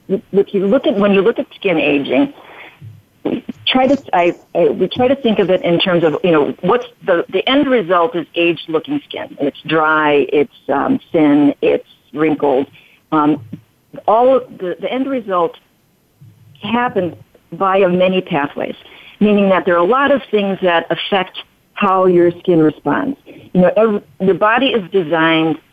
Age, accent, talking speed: 50-69, American, 170 wpm